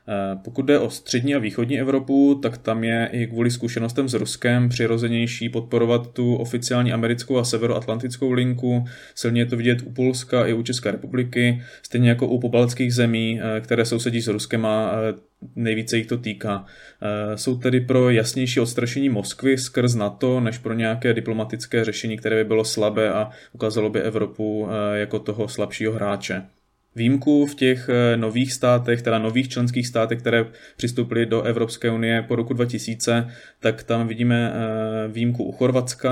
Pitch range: 110-120 Hz